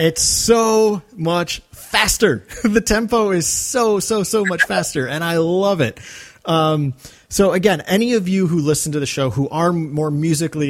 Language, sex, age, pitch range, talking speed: English, male, 30-49, 125-170 Hz, 175 wpm